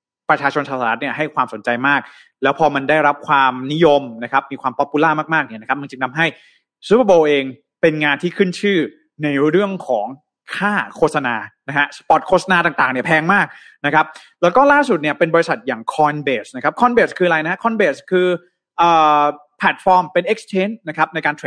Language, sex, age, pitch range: Thai, male, 20-39, 140-185 Hz